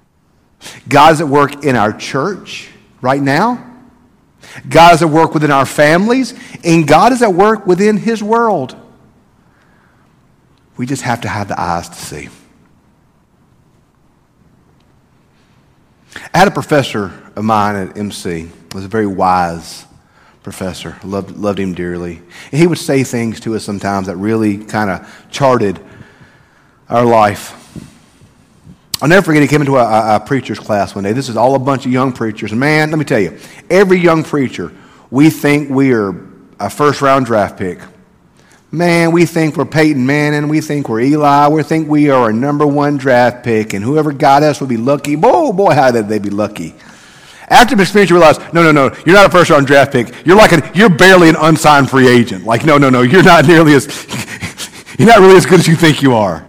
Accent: American